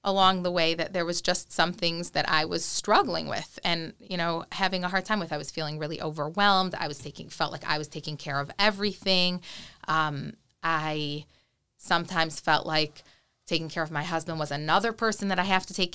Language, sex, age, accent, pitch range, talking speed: English, female, 30-49, American, 155-185 Hz, 210 wpm